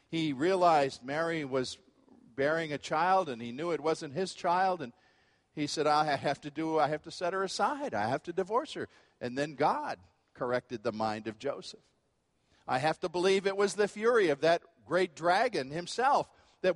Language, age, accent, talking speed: English, 50-69, American, 195 wpm